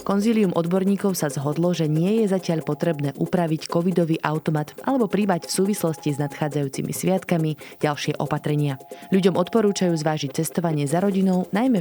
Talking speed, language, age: 140 wpm, Slovak, 20-39